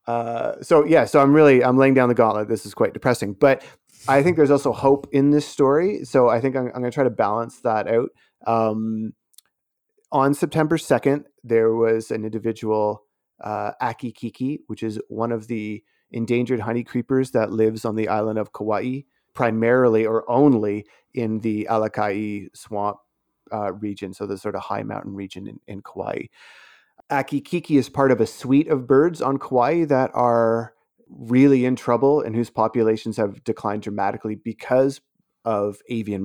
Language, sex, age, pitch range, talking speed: English, male, 30-49, 105-130 Hz, 175 wpm